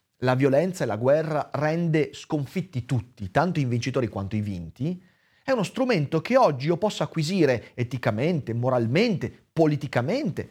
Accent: native